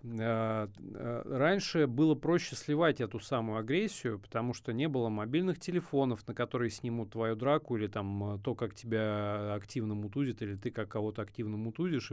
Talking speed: 155 wpm